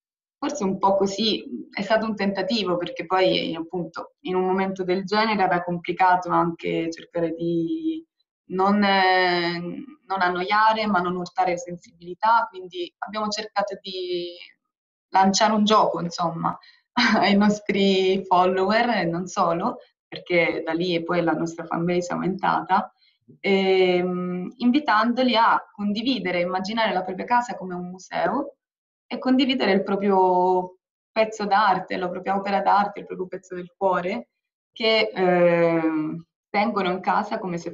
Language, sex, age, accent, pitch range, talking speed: Italian, female, 20-39, native, 175-215 Hz, 130 wpm